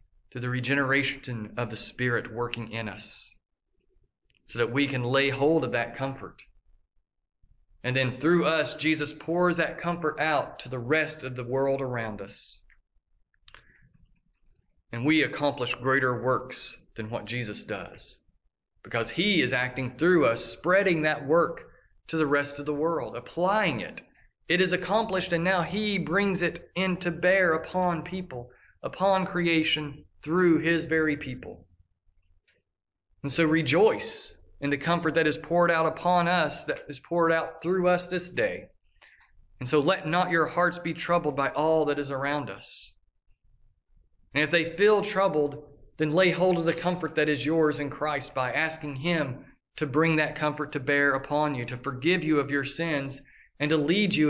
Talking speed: 165 wpm